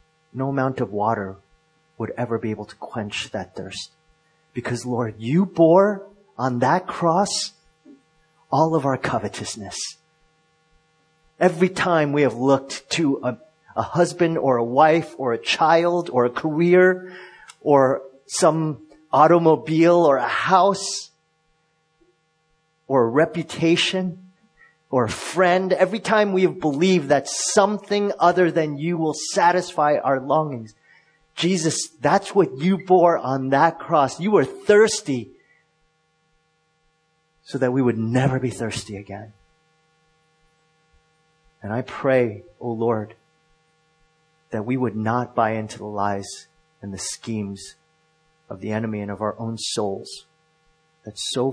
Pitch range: 125-165 Hz